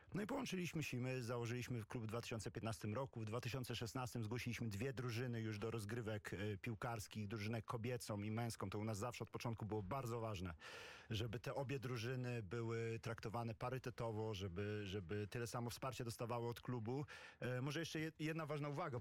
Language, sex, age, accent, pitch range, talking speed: Polish, male, 40-59, native, 115-135 Hz, 165 wpm